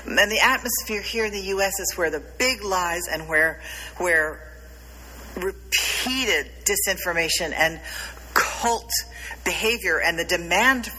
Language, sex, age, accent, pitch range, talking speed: English, female, 50-69, American, 140-195 Hz, 125 wpm